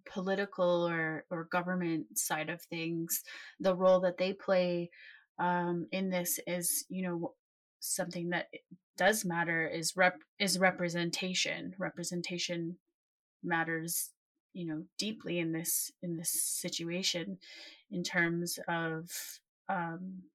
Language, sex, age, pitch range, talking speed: English, female, 20-39, 165-185 Hz, 120 wpm